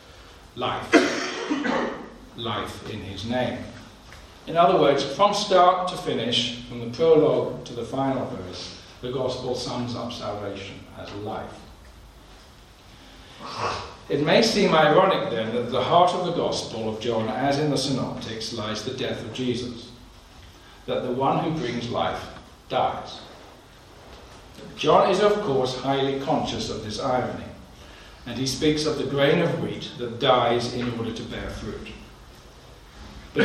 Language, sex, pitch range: English, male, 115-160 Hz